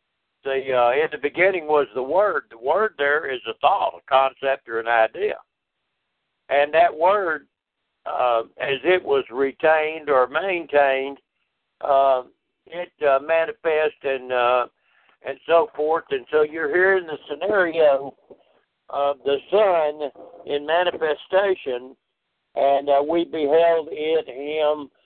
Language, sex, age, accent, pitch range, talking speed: English, male, 60-79, American, 135-180 Hz, 135 wpm